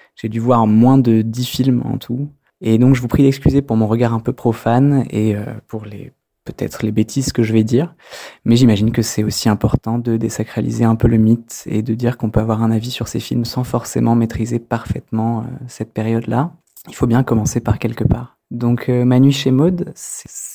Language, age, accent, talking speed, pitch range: French, 20-39, French, 220 wpm, 115-135 Hz